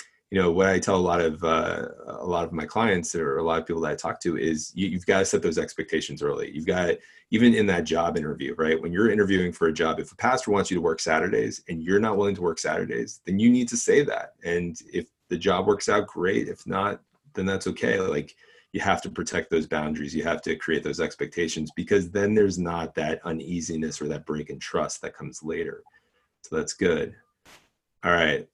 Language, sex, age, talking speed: English, male, 30-49, 235 wpm